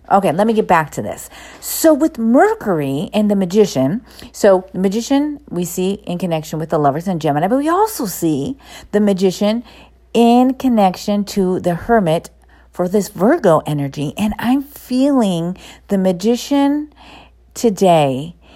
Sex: female